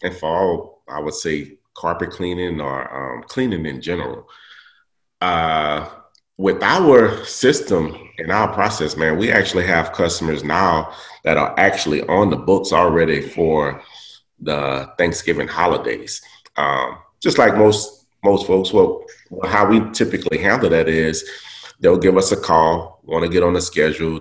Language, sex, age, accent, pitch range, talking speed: English, male, 30-49, American, 80-95 Hz, 150 wpm